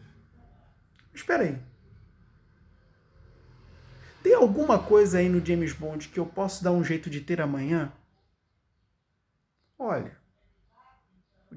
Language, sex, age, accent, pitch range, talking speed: Portuguese, male, 20-39, Brazilian, 160-250 Hz, 105 wpm